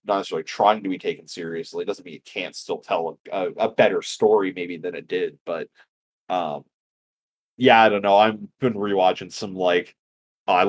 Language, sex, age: English, male, 30-49